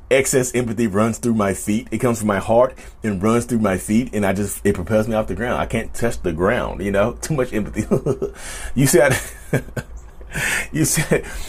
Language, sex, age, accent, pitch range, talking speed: English, male, 30-49, American, 125-165 Hz, 205 wpm